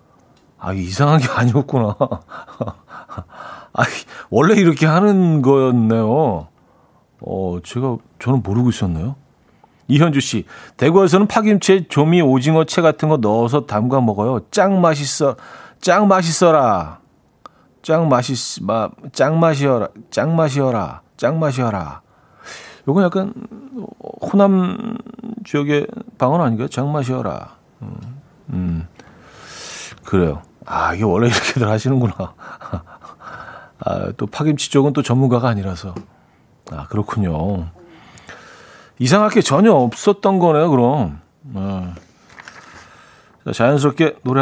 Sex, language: male, Korean